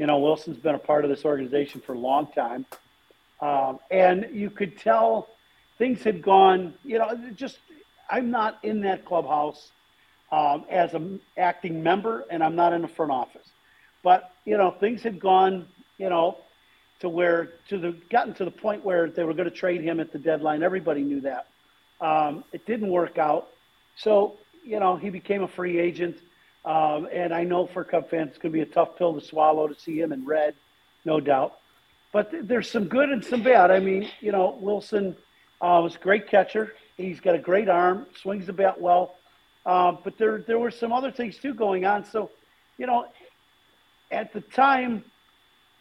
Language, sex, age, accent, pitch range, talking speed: English, male, 50-69, American, 170-210 Hz, 195 wpm